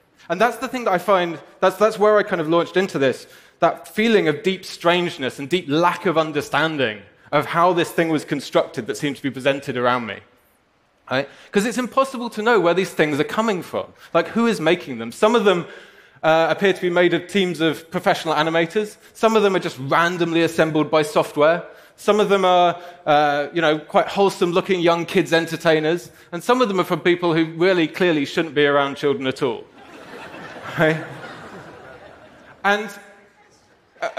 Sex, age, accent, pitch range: male, 20-39, British, 150-200 Hz